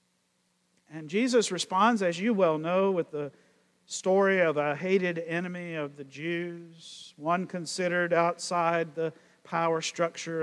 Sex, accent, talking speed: male, American, 130 wpm